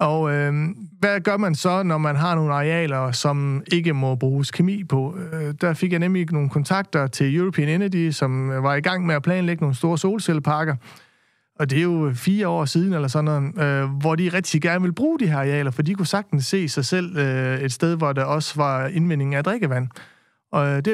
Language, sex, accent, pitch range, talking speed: Danish, male, native, 145-180 Hz, 215 wpm